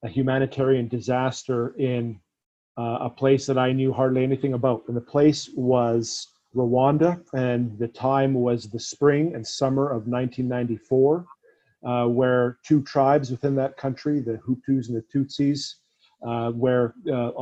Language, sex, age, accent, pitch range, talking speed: English, male, 40-59, American, 120-135 Hz, 150 wpm